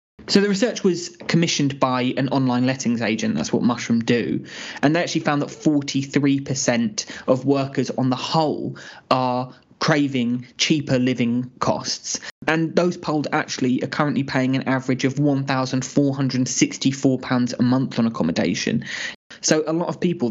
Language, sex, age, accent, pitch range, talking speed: English, male, 20-39, British, 125-150 Hz, 150 wpm